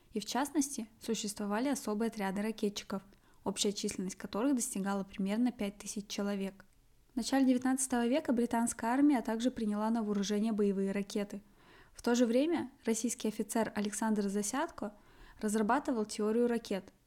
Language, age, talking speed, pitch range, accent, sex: Russian, 20-39, 130 wpm, 205-245 Hz, native, female